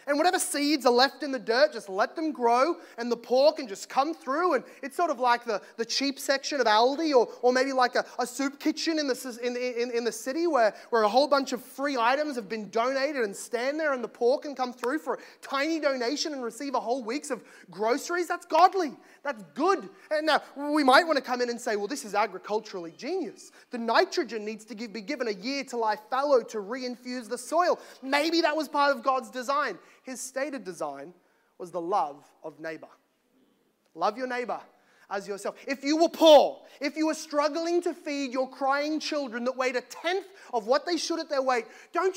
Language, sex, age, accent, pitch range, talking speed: English, male, 20-39, Australian, 245-310 Hz, 215 wpm